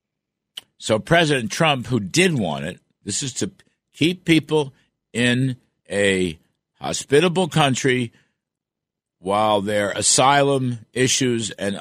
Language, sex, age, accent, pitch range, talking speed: English, male, 60-79, American, 105-135 Hz, 105 wpm